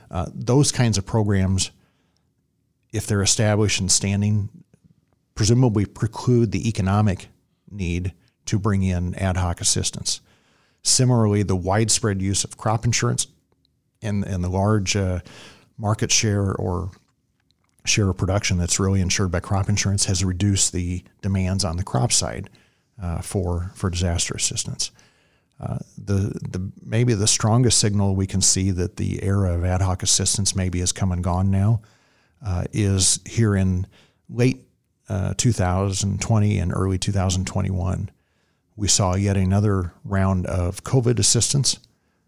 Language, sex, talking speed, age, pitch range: English, male, 140 wpm, 50-69, 95-110 Hz